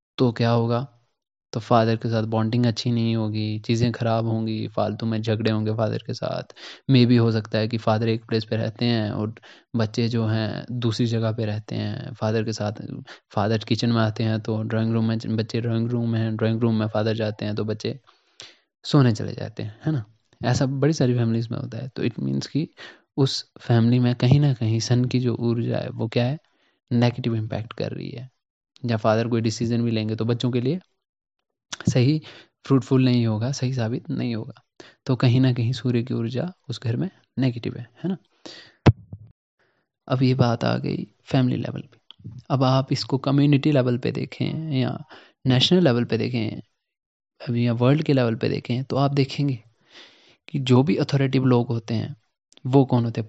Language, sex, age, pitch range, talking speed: Hindi, male, 20-39, 115-130 Hz, 195 wpm